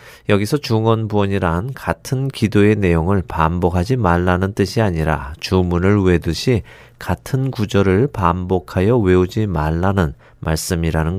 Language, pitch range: Korean, 85-115 Hz